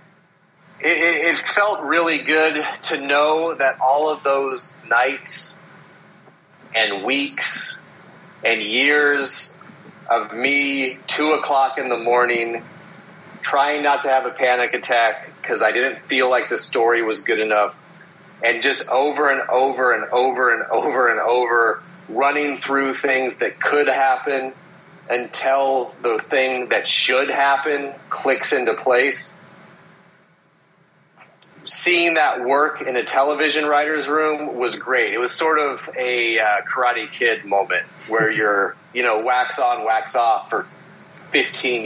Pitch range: 130-170 Hz